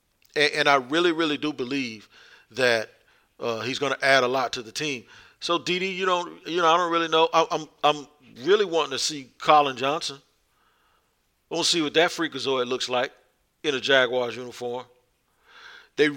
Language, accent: English, American